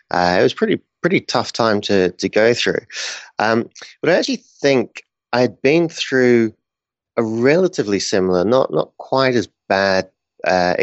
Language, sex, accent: English, male, British